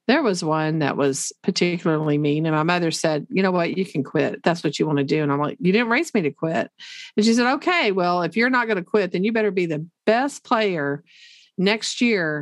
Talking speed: 250 wpm